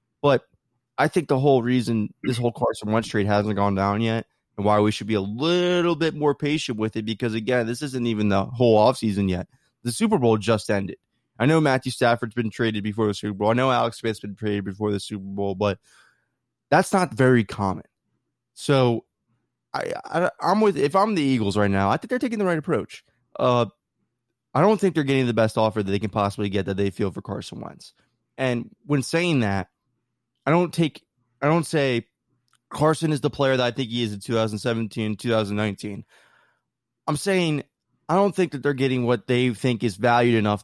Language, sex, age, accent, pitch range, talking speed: English, male, 20-39, American, 110-160 Hz, 205 wpm